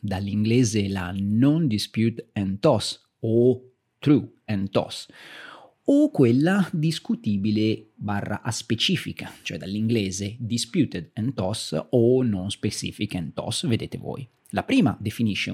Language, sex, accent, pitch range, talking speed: Italian, male, native, 105-145 Hz, 120 wpm